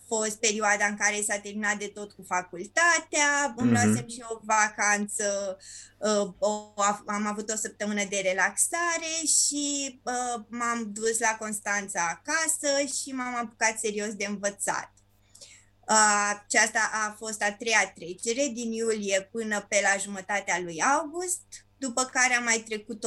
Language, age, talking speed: Romanian, 20-39, 140 wpm